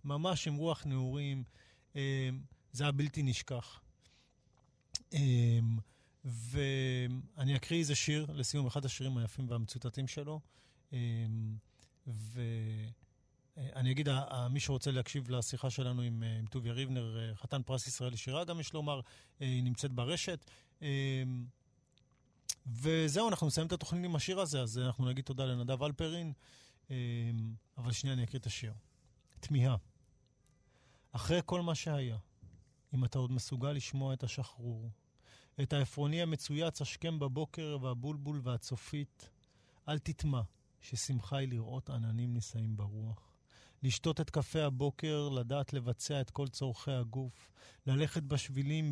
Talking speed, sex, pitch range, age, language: 120 wpm, male, 120-145 Hz, 40-59, Hebrew